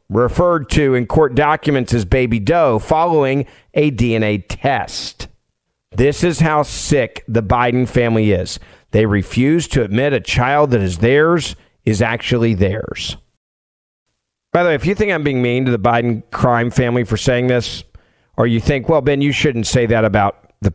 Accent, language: American, English